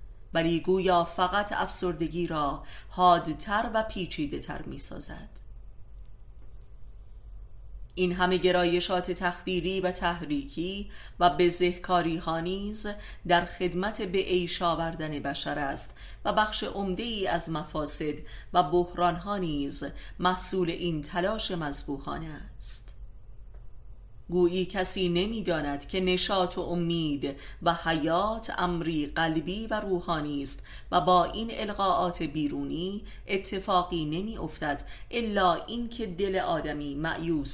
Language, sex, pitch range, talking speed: Persian, female, 145-185 Hz, 105 wpm